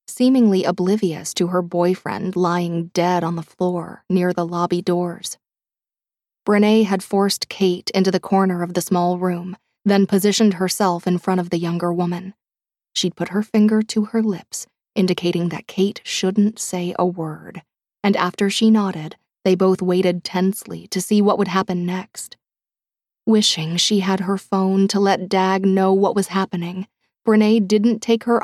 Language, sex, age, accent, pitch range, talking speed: English, female, 20-39, American, 180-205 Hz, 165 wpm